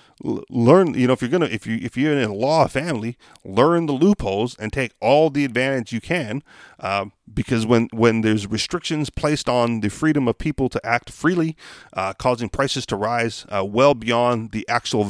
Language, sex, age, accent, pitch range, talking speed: English, male, 40-59, American, 115-145 Hz, 195 wpm